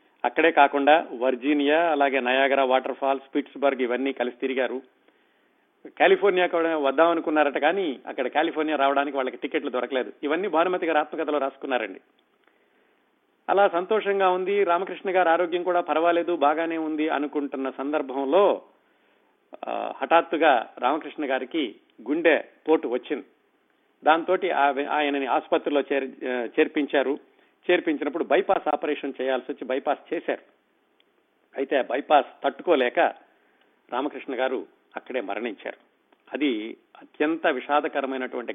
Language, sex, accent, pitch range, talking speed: Telugu, male, native, 135-180 Hz, 100 wpm